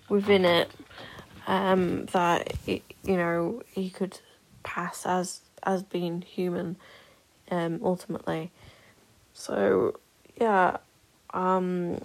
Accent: British